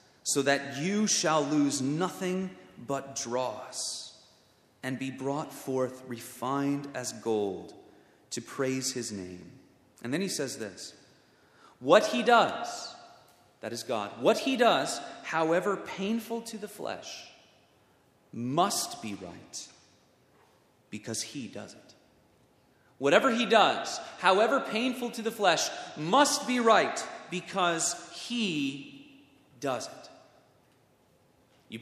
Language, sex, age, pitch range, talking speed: English, male, 30-49, 125-200 Hz, 115 wpm